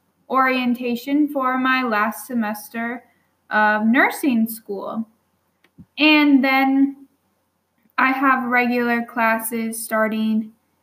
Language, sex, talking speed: English, female, 85 wpm